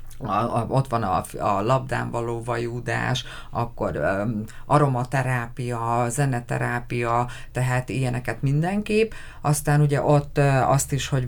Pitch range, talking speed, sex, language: 120-140 Hz, 100 wpm, female, Hungarian